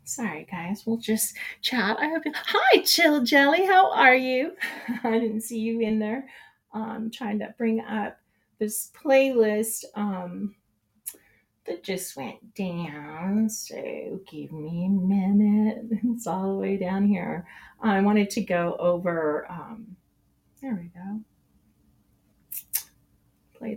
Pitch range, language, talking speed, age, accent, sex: 190-235 Hz, English, 135 wpm, 30-49, American, female